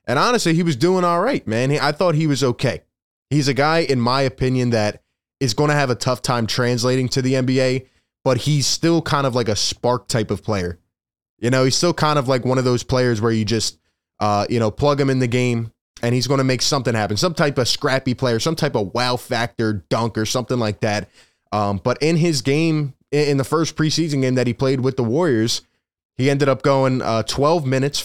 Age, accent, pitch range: 20-39, American, 115-140 Hz